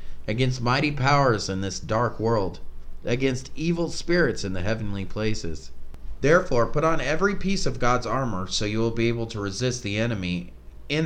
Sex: male